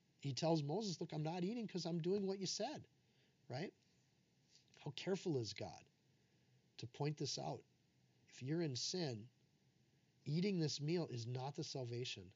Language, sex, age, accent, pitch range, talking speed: English, male, 40-59, American, 120-145 Hz, 160 wpm